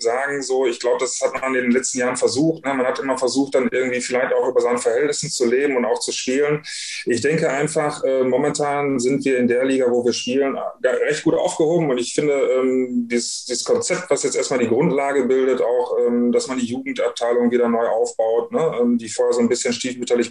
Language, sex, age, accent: German, male, 30-49, German